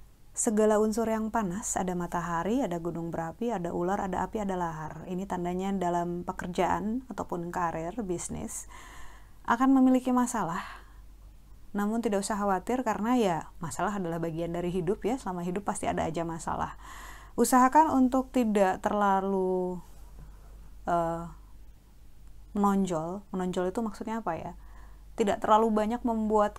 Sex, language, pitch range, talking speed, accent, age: female, Indonesian, 180-225 Hz, 130 wpm, native, 30-49